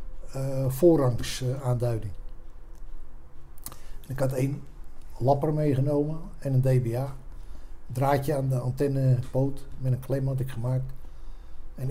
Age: 60-79